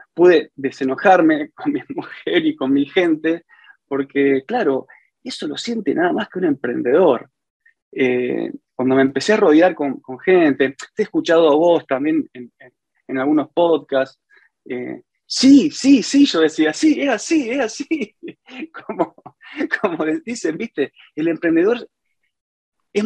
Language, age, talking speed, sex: Spanish, 20-39, 145 wpm, male